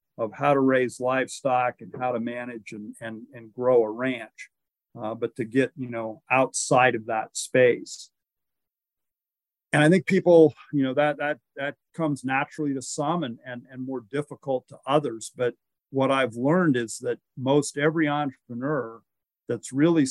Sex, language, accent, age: male, English, American, 50-69